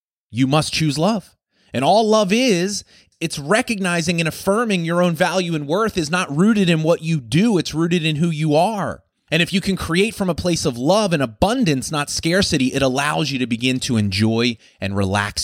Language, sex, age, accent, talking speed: English, male, 30-49, American, 205 wpm